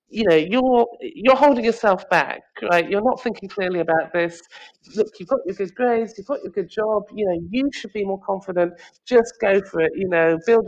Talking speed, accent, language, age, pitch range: 225 wpm, British, English, 40-59, 160-215 Hz